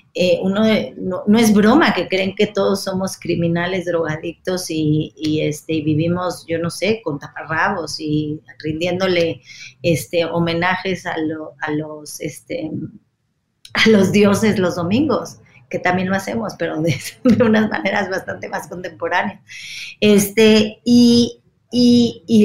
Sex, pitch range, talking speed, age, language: female, 165-205 Hz, 140 wpm, 30-49, English